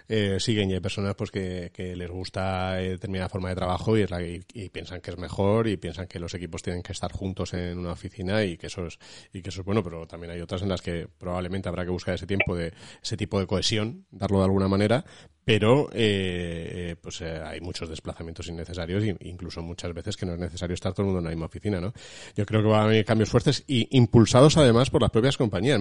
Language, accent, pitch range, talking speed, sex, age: Spanish, Spanish, 90-105 Hz, 245 wpm, male, 30-49